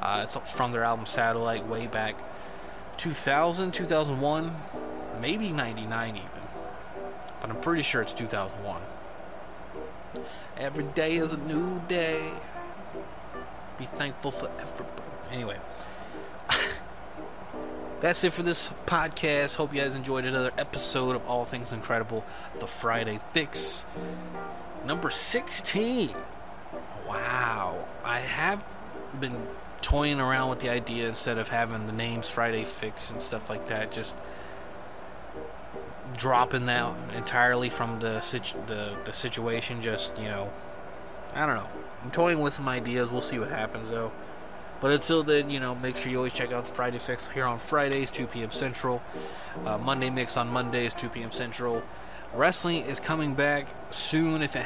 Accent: American